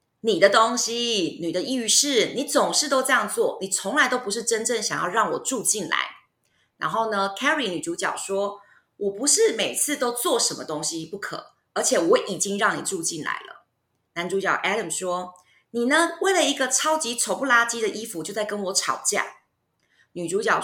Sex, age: female, 20-39